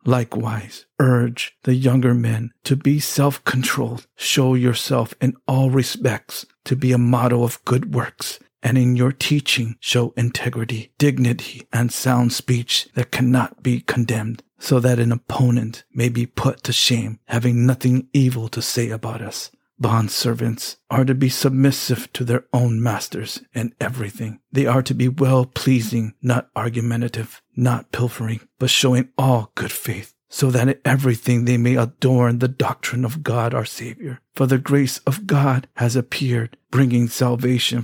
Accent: American